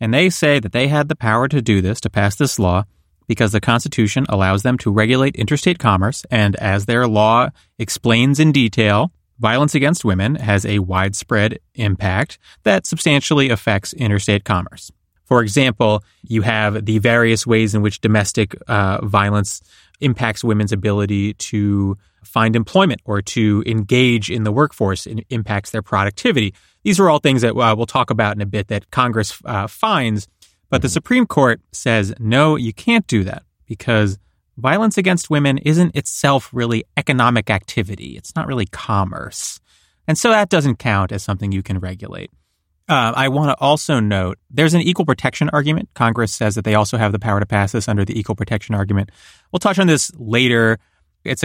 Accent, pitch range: American, 100-130 Hz